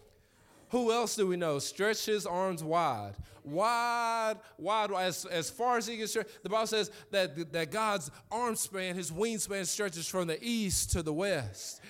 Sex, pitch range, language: male, 135-190 Hz, English